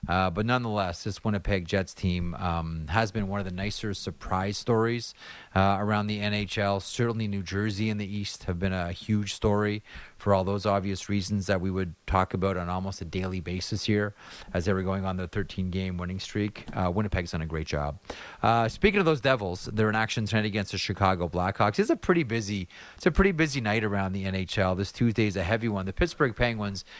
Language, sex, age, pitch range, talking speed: English, male, 30-49, 95-115 Hz, 215 wpm